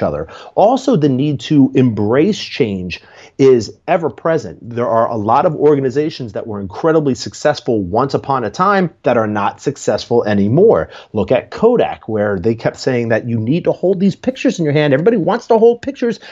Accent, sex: American, male